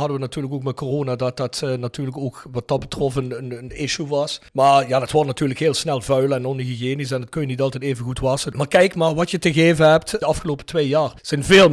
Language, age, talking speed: Dutch, 40-59, 270 wpm